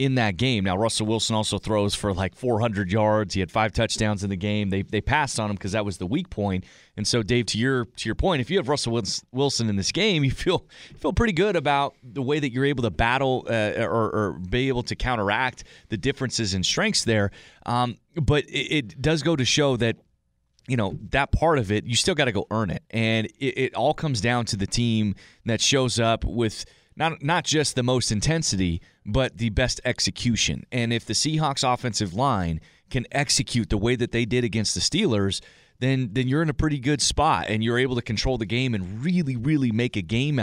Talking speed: 225 wpm